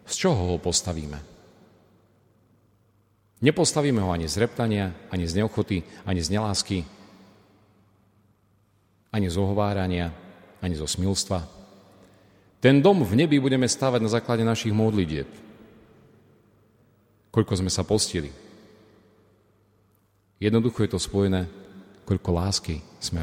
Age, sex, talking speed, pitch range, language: 40-59, male, 105 wpm, 90-105 Hz, Slovak